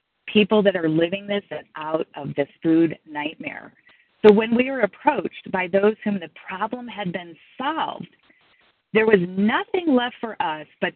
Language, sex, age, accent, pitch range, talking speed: English, female, 40-59, American, 190-255 Hz, 165 wpm